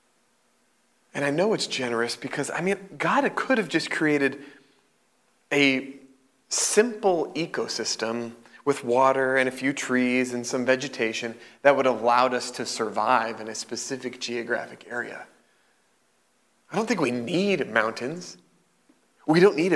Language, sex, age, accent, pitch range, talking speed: English, male, 30-49, American, 120-150 Hz, 140 wpm